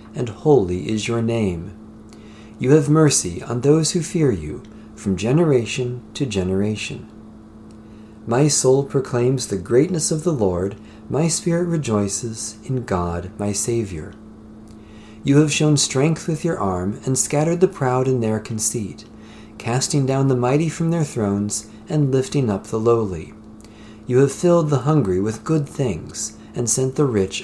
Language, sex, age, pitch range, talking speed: English, male, 40-59, 110-140 Hz, 155 wpm